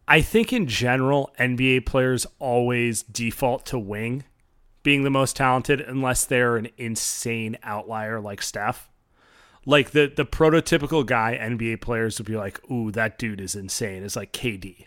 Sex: male